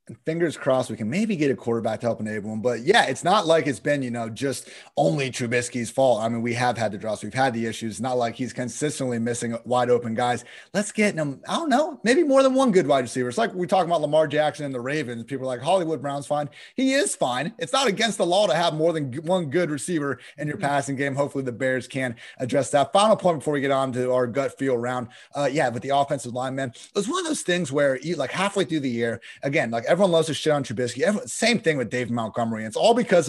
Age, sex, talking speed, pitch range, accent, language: 30-49, male, 265 wpm, 120-155 Hz, American, English